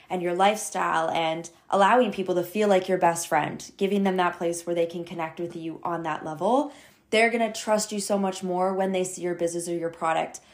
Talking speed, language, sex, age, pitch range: 230 wpm, English, female, 20-39, 170-205 Hz